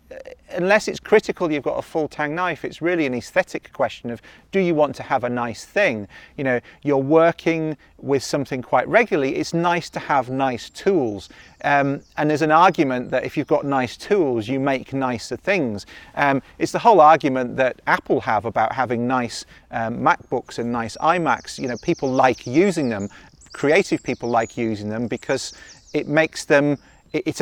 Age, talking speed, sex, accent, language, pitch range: 40-59, 185 wpm, male, British, English, 130-165 Hz